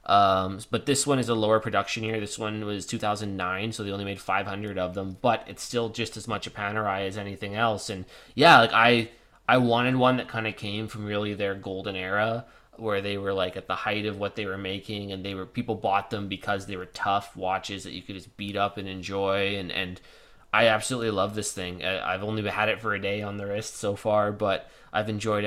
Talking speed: 235 wpm